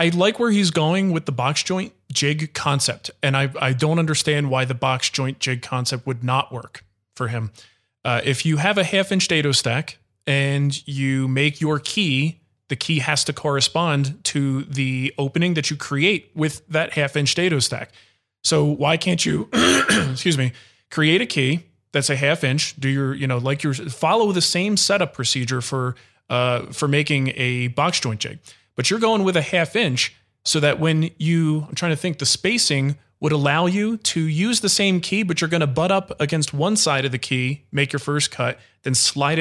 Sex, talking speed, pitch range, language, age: male, 200 wpm, 130-160 Hz, English, 20-39